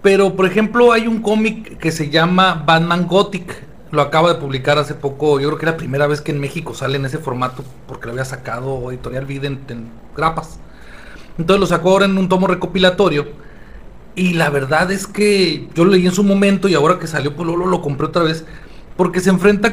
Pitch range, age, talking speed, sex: 145-190 Hz, 40-59, 220 wpm, male